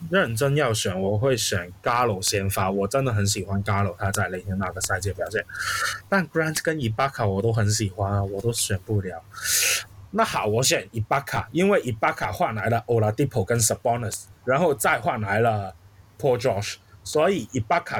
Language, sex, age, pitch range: Chinese, male, 20-39, 100-135 Hz